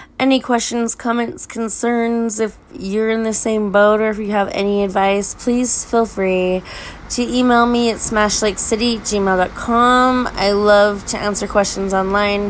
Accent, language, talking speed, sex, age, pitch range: American, English, 145 wpm, female, 20-39, 190-235 Hz